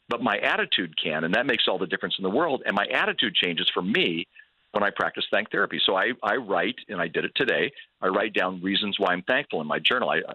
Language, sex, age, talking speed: English, male, 50-69, 255 wpm